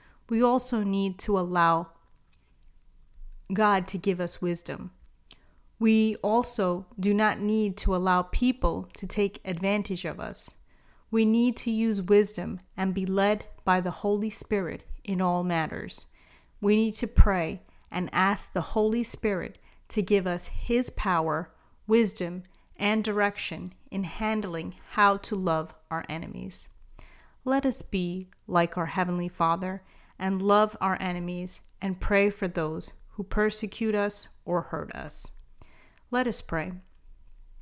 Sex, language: female, English